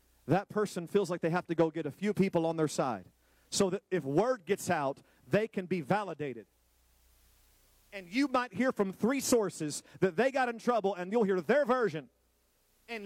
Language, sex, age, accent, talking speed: English, male, 40-59, American, 200 wpm